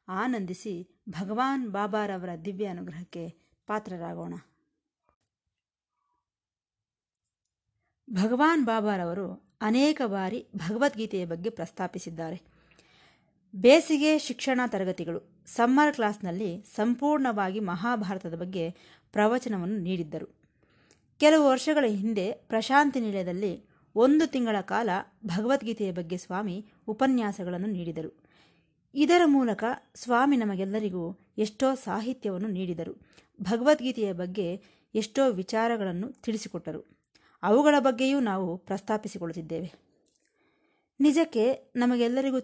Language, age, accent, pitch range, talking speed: Kannada, 30-49, native, 185-250 Hz, 75 wpm